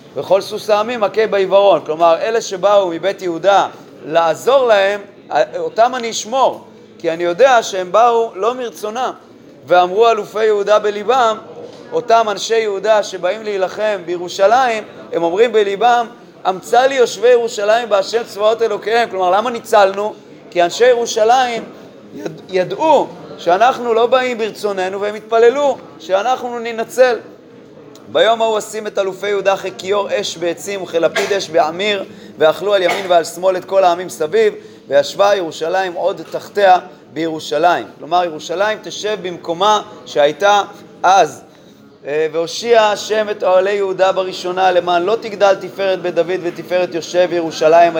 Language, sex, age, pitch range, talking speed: Hebrew, male, 30-49, 180-225 Hz, 130 wpm